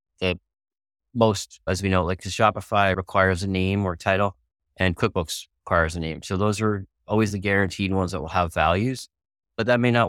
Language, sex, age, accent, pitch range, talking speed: English, male, 30-49, American, 90-105 Hz, 190 wpm